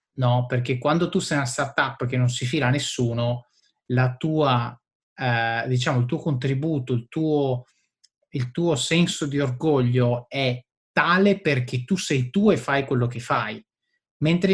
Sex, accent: male, native